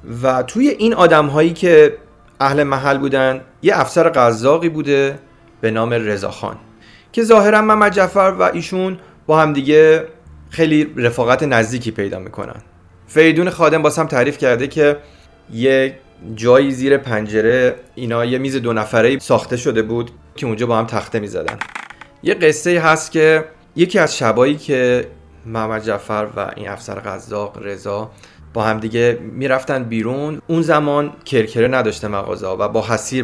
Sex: male